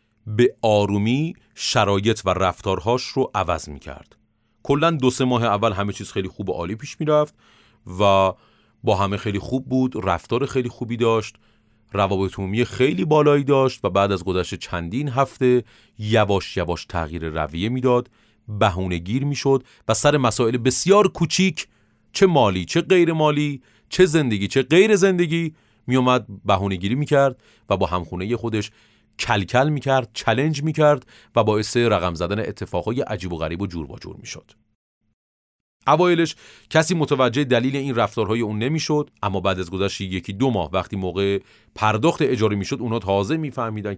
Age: 30-49